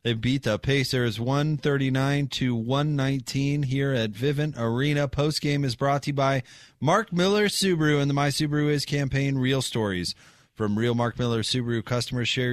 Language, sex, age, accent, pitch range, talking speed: English, male, 30-49, American, 120-140 Hz, 185 wpm